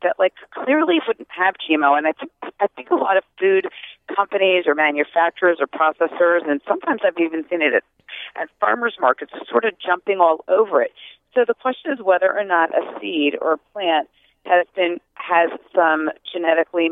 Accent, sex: American, female